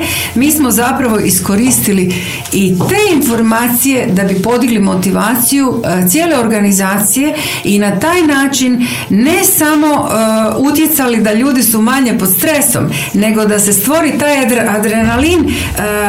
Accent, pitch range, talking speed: native, 200-260 Hz, 125 wpm